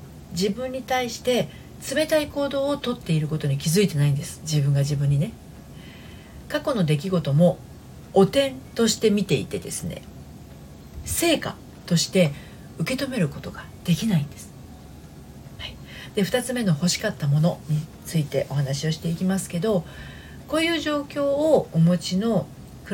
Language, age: Japanese, 40-59